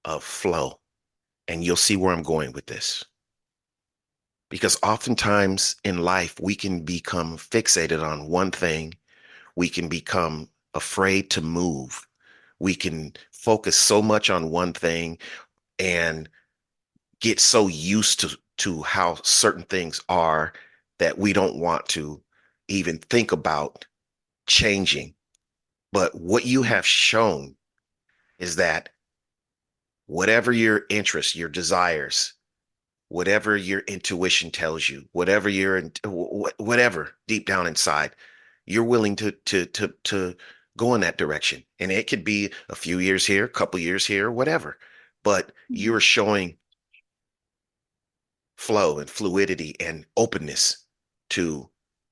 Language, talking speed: English, 125 wpm